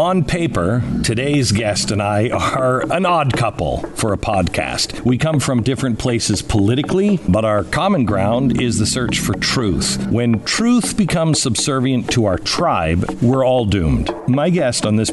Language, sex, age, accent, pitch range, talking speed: English, male, 50-69, American, 105-130 Hz, 165 wpm